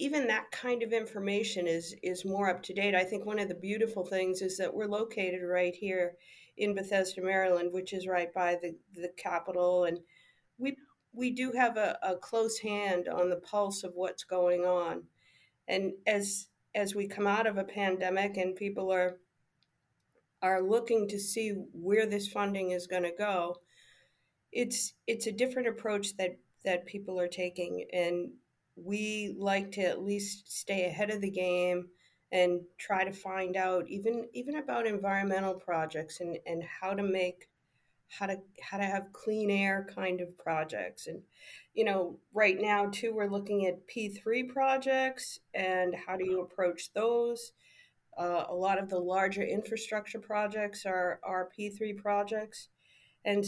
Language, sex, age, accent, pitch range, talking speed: English, female, 50-69, American, 180-210 Hz, 165 wpm